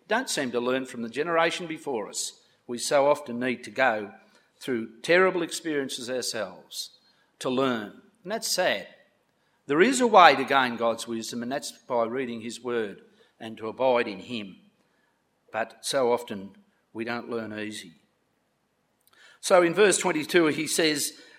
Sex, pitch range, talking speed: male, 120-170 Hz, 155 wpm